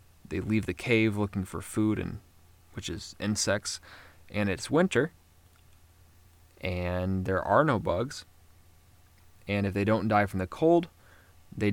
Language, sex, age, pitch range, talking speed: English, male, 20-39, 90-110 Hz, 145 wpm